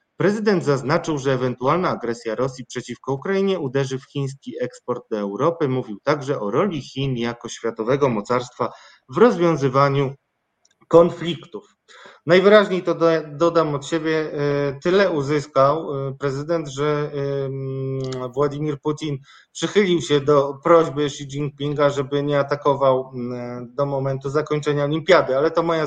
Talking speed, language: 120 wpm, Polish